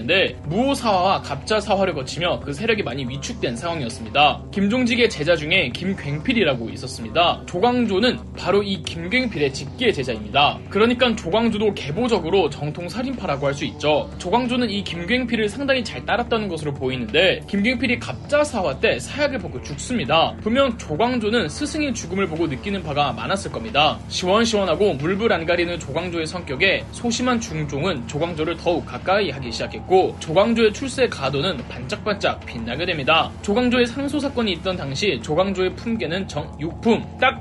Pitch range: 170-240 Hz